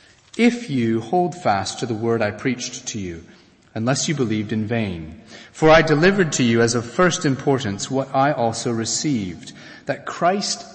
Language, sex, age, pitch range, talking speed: English, male, 40-59, 135-185 Hz, 175 wpm